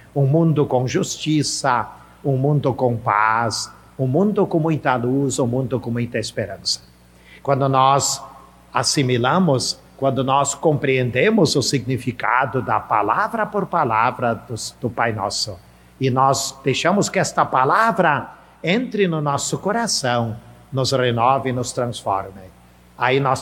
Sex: male